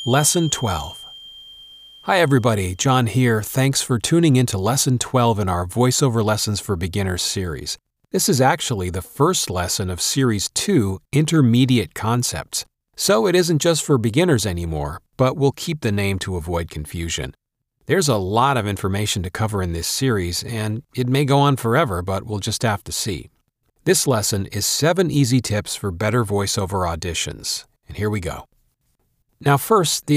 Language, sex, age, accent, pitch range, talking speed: English, male, 40-59, American, 95-135 Hz, 170 wpm